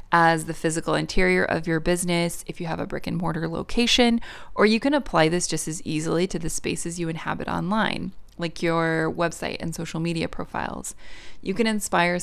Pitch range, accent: 155-195 Hz, American